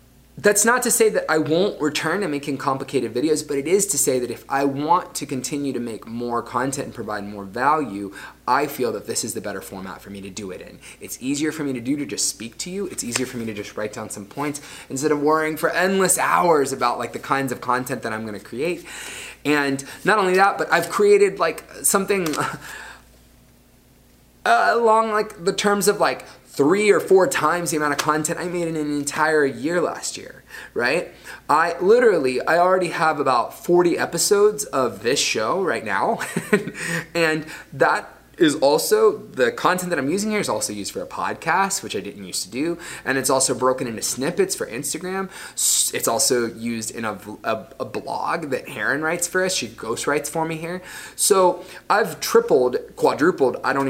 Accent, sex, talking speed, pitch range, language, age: American, male, 205 wpm, 125-190 Hz, English, 20-39